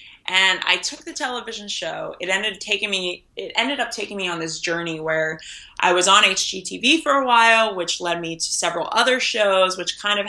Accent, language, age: American, English, 20-39